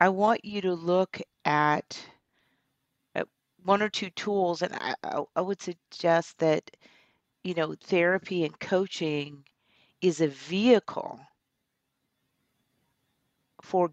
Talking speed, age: 110 wpm, 40-59